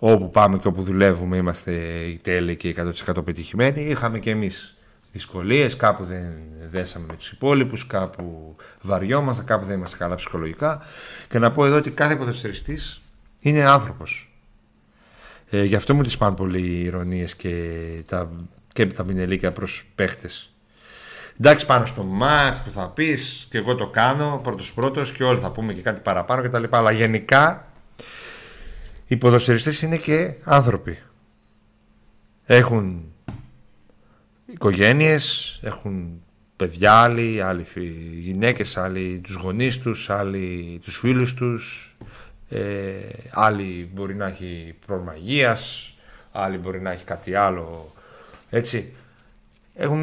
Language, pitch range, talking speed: Greek, 90-130 Hz, 125 wpm